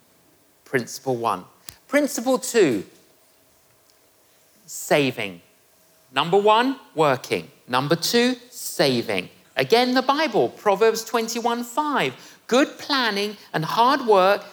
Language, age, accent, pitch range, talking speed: English, 50-69, British, 175-265 Hz, 85 wpm